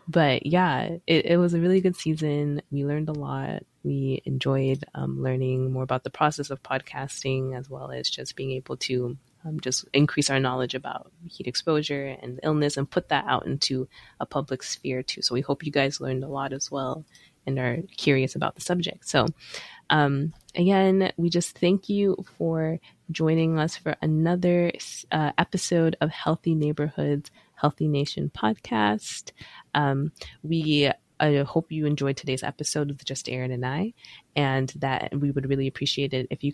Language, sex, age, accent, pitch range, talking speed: English, female, 20-39, American, 135-165 Hz, 175 wpm